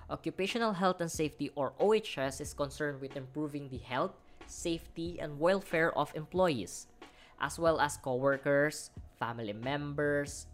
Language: English